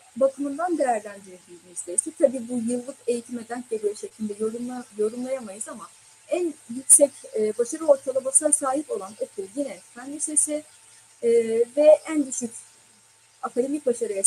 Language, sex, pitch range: Turkish, female, 230-290 Hz